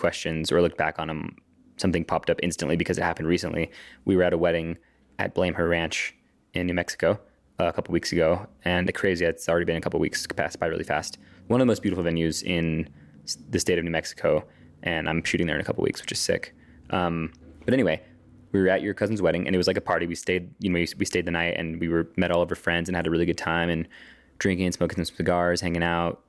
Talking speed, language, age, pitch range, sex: 255 wpm, English, 20-39, 80-95 Hz, male